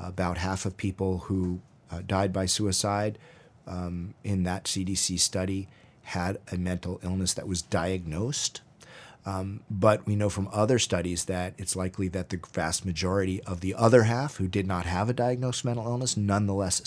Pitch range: 90-105 Hz